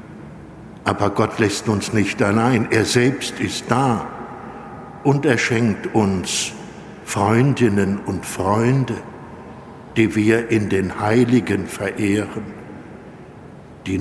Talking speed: 105 wpm